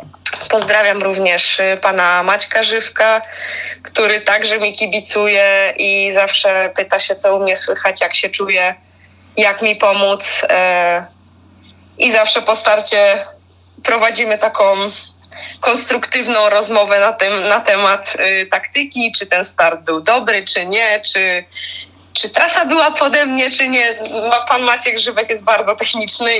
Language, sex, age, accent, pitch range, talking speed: Polish, female, 20-39, native, 180-225 Hz, 130 wpm